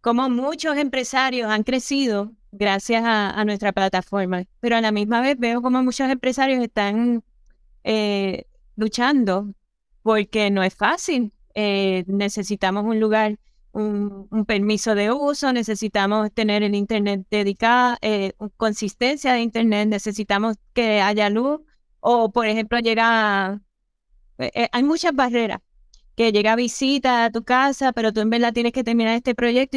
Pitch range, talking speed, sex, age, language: 215-250 Hz, 145 wpm, female, 20-39, Spanish